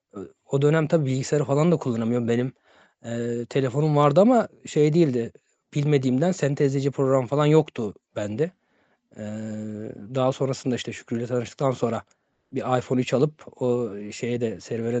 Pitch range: 120-155 Hz